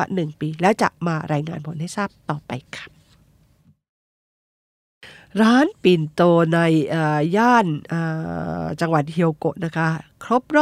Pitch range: 160-200 Hz